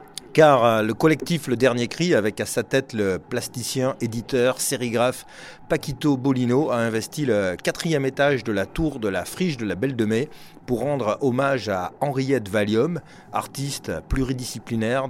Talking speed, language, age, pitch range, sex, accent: 160 wpm, French, 30-49, 110-140 Hz, male, French